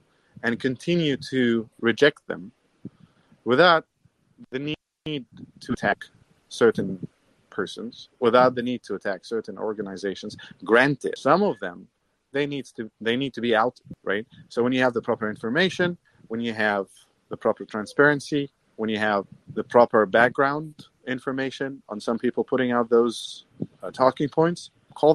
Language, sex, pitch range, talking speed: English, male, 115-145 Hz, 145 wpm